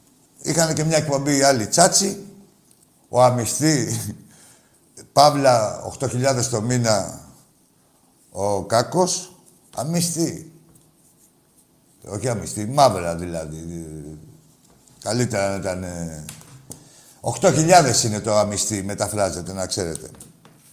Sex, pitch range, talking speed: male, 120-185 Hz, 85 wpm